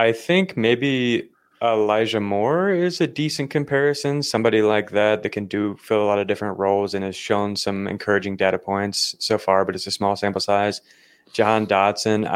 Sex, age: male, 20-39